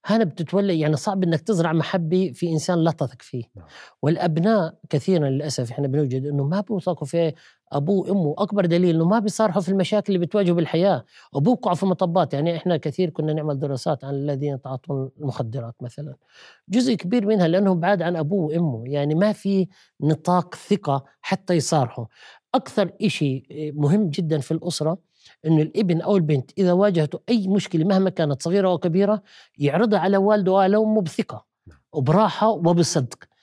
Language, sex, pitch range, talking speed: Arabic, male, 150-195 Hz, 160 wpm